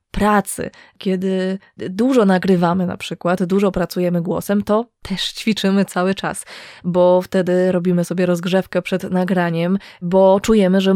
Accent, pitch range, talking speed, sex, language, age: native, 175-200 Hz, 130 wpm, female, Polish, 20-39